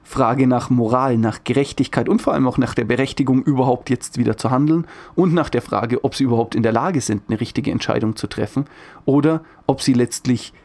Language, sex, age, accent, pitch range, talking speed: German, male, 40-59, German, 120-145 Hz, 210 wpm